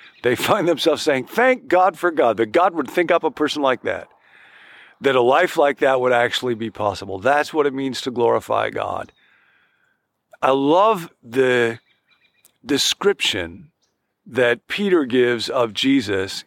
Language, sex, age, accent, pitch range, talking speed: English, male, 50-69, American, 120-160 Hz, 155 wpm